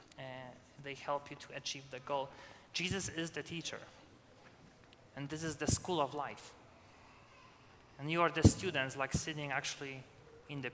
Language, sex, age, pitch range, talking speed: English, male, 20-39, 130-160 Hz, 160 wpm